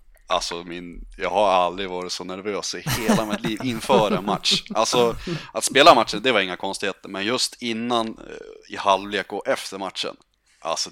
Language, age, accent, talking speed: Swedish, 30-49, native, 175 wpm